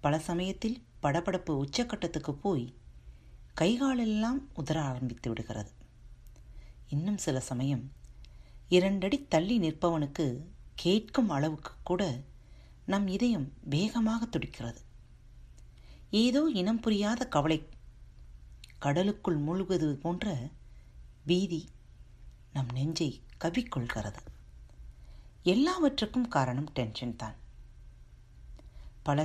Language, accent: Tamil, native